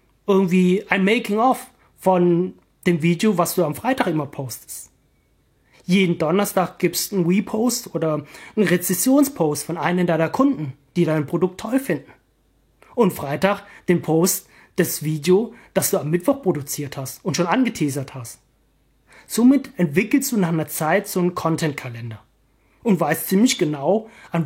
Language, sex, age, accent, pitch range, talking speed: German, male, 30-49, German, 150-200 Hz, 150 wpm